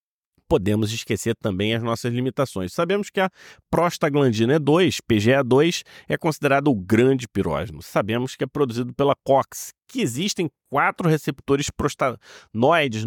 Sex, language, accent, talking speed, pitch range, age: male, Portuguese, Brazilian, 130 wpm, 110-150 Hz, 30-49